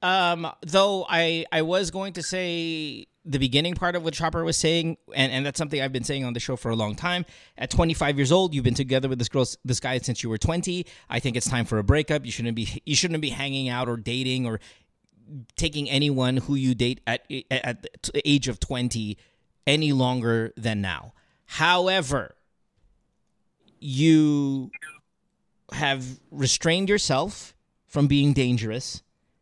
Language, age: English, 30-49